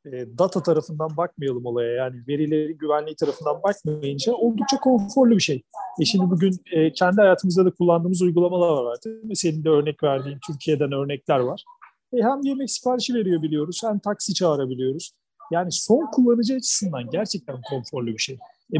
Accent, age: native, 40-59